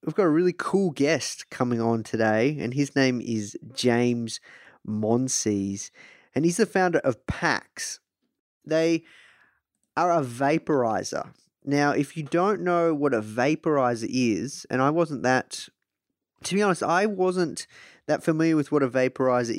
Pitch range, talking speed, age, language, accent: 110-140 Hz, 150 wpm, 20-39, English, Australian